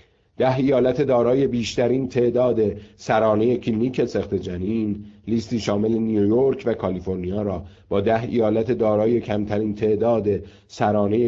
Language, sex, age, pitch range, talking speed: Persian, male, 50-69, 95-115 Hz, 115 wpm